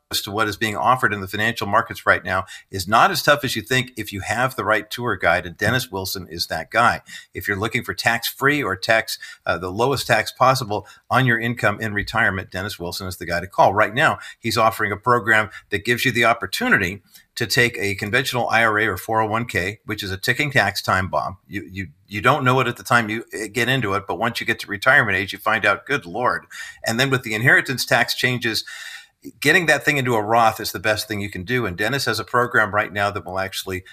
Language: English